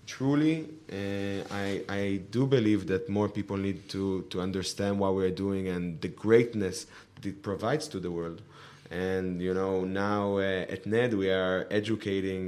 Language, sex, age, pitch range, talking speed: English, male, 30-49, 95-115 Hz, 170 wpm